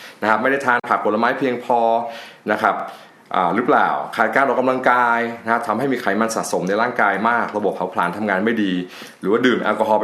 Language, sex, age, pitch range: Thai, male, 20-39, 100-125 Hz